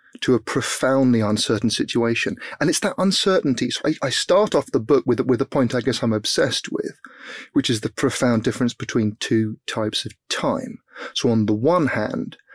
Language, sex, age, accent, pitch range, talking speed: English, male, 30-49, British, 110-135 Hz, 190 wpm